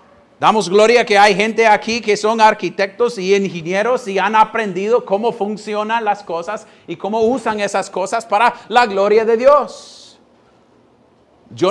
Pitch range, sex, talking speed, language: 200-290 Hz, male, 150 wpm, Spanish